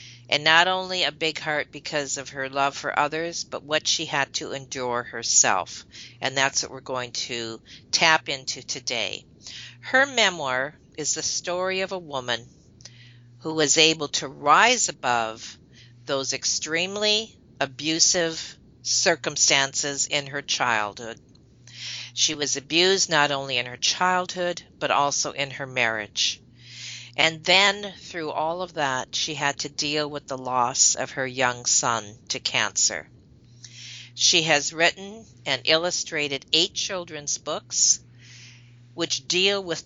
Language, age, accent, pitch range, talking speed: English, 50-69, American, 120-165 Hz, 140 wpm